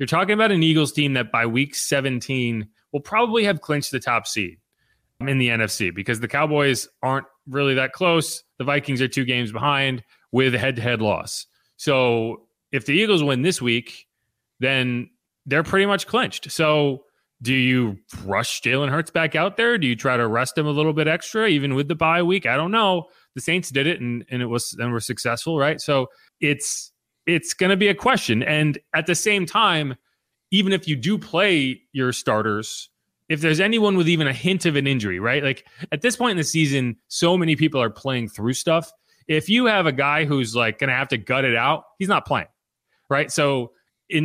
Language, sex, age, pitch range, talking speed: English, male, 30-49, 125-170 Hz, 210 wpm